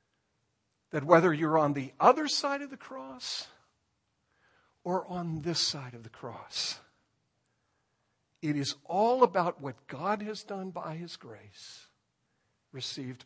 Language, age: English, 50-69